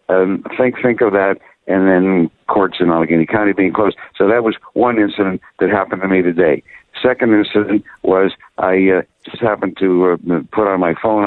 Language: English